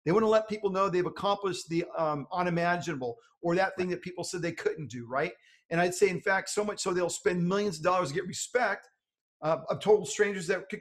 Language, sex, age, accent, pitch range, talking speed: English, male, 40-59, American, 165-220 Hz, 240 wpm